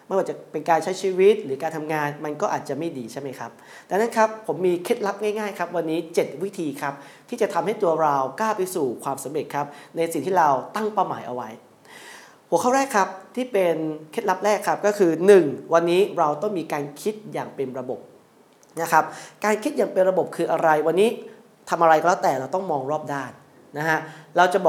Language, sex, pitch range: Thai, male, 150-195 Hz